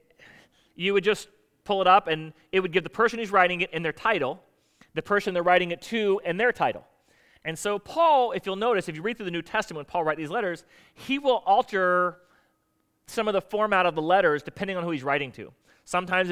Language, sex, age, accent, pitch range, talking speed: English, male, 30-49, American, 150-190 Hz, 225 wpm